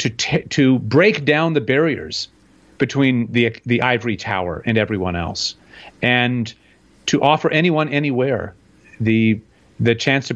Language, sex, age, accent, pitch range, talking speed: English, male, 40-59, American, 135-190 Hz, 140 wpm